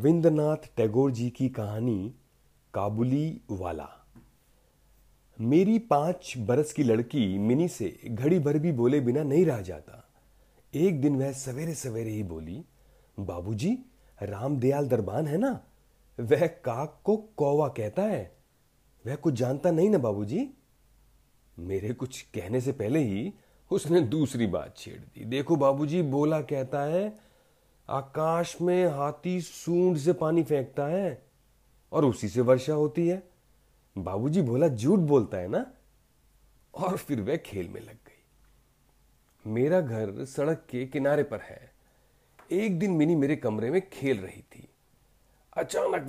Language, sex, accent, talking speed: Hindi, male, native, 140 wpm